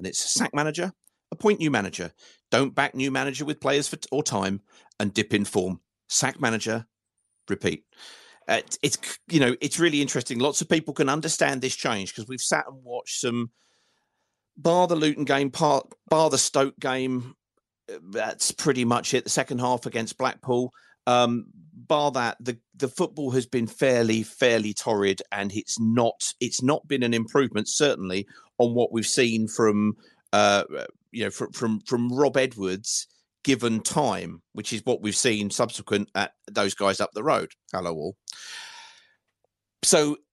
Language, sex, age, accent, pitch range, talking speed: English, male, 40-59, British, 110-145 Hz, 170 wpm